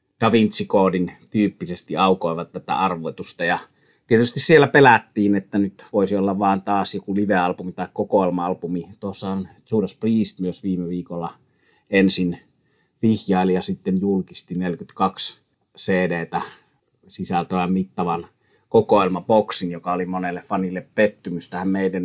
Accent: native